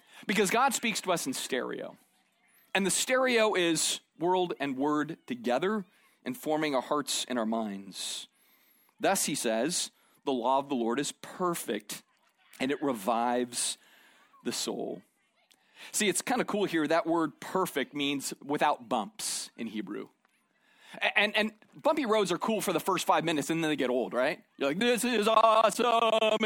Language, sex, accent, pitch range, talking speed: English, male, American, 165-240 Hz, 165 wpm